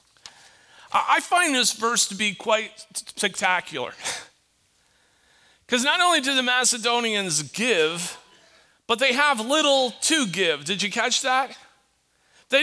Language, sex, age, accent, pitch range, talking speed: English, male, 40-59, American, 215-285 Hz, 125 wpm